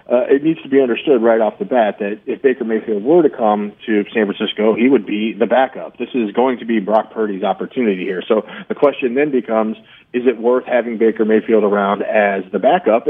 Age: 40-59